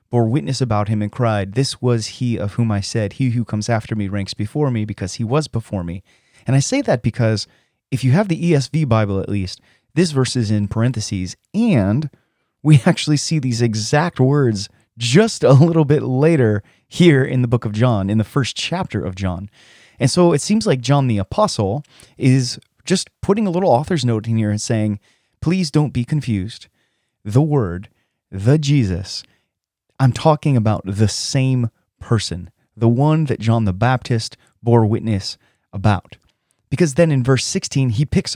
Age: 30-49